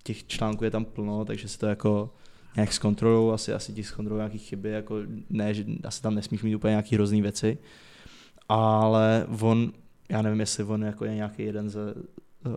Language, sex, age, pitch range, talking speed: Czech, male, 20-39, 105-115 Hz, 175 wpm